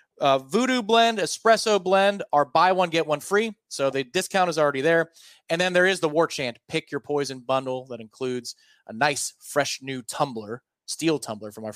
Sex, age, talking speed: male, 30-49, 195 wpm